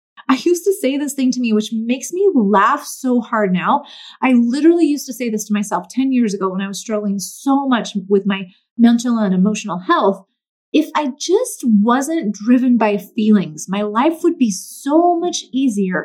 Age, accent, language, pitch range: 30-49, American, English, 210-285 Hz